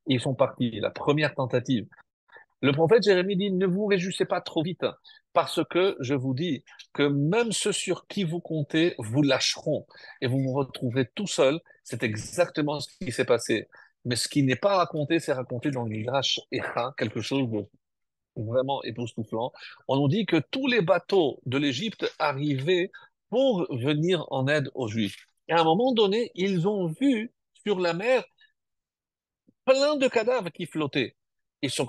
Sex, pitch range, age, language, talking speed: male, 135-190 Hz, 50-69, French, 175 wpm